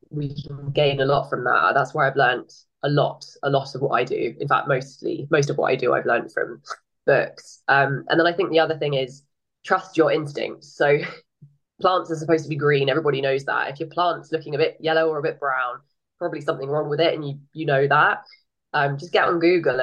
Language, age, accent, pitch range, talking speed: English, 20-39, British, 140-160 Hz, 240 wpm